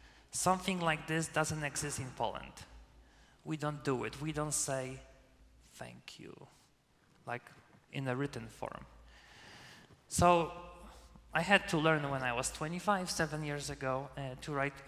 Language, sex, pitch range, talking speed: English, male, 120-155 Hz, 145 wpm